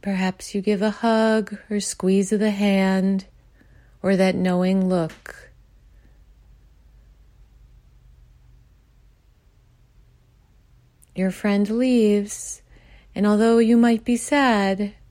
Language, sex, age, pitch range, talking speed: English, female, 30-49, 175-205 Hz, 90 wpm